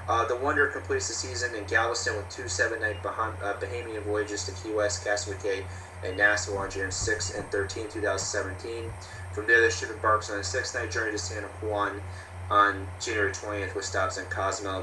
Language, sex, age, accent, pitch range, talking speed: English, male, 30-49, American, 90-105 Hz, 185 wpm